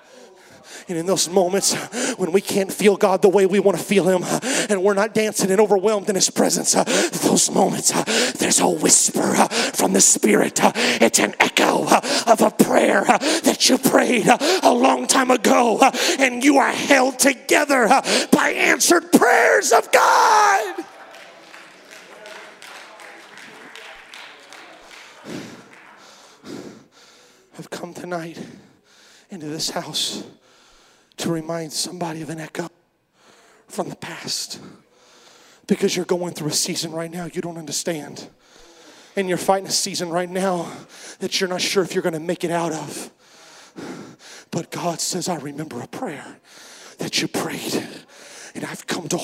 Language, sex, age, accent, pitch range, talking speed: English, male, 30-49, American, 175-225 Hz, 140 wpm